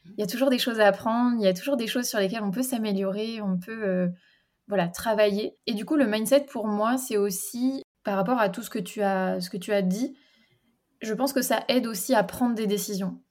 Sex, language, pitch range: female, French, 200-245 Hz